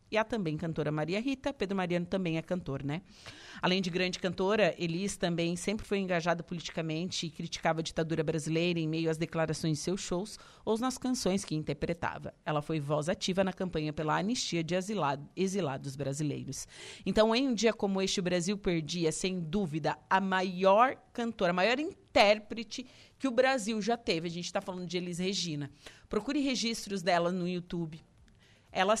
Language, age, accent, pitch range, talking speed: Portuguese, 40-59, Brazilian, 165-205 Hz, 175 wpm